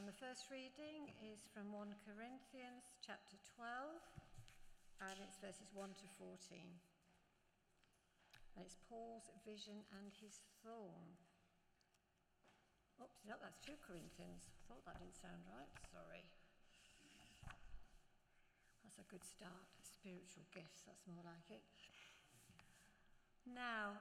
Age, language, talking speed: 60-79, English, 110 wpm